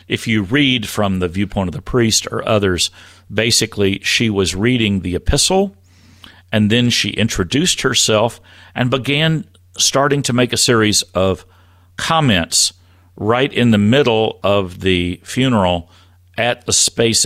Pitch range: 90-115 Hz